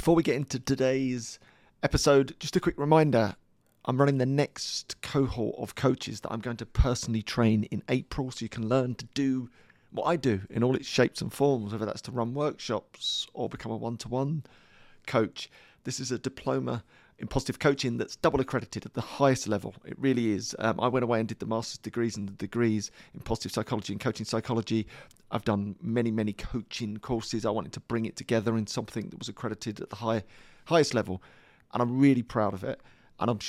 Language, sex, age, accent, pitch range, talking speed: English, male, 40-59, British, 110-130 Hz, 205 wpm